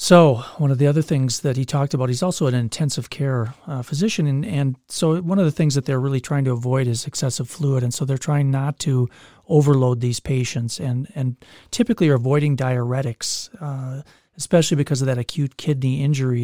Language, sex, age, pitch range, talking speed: English, male, 40-59, 130-155 Hz, 205 wpm